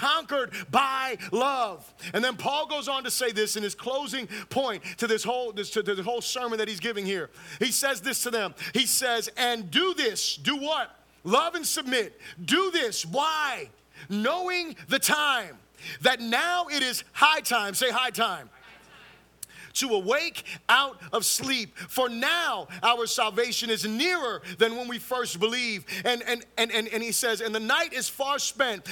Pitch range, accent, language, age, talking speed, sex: 205-275 Hz, American, English, 30-49, 175 wpm, male